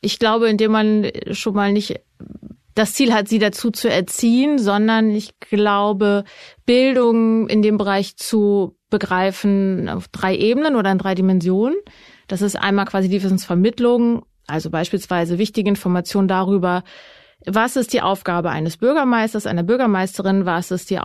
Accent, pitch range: German, 195-230 Hz